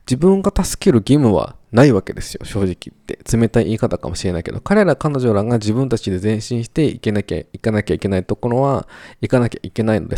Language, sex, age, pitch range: Japanese, male, 20-39, 90-125 Hz